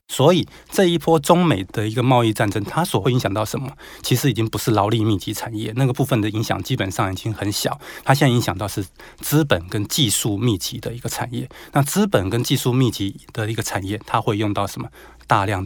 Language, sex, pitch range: Chinese, male, 105-130 Hz